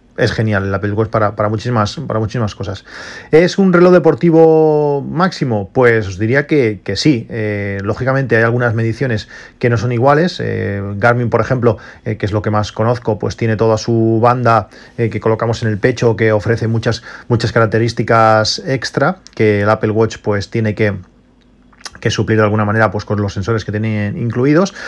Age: 40-59